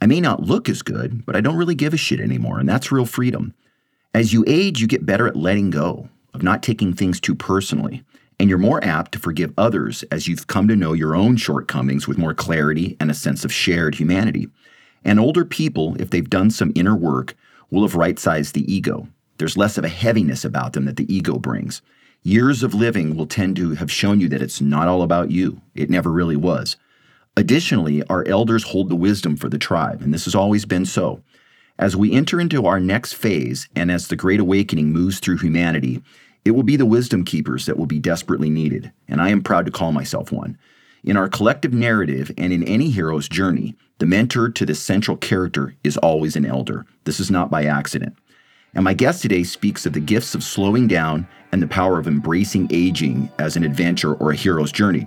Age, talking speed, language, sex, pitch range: 40-59, 215 wpm, English, male, 75-110 Hz